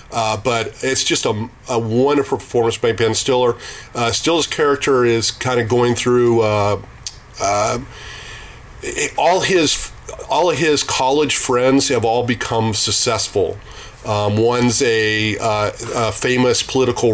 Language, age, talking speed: English, 40-59, 135 wpm